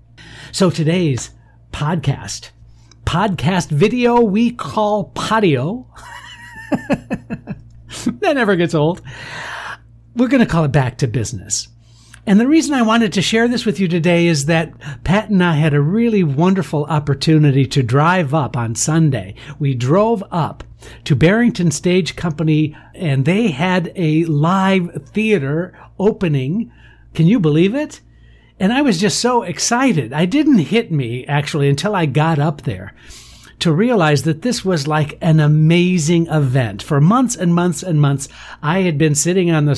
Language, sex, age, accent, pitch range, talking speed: English, male, 60-79, American, 140-190 Hz, 150 wpm